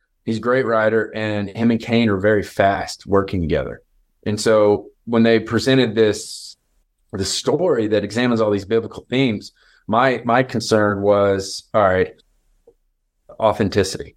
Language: English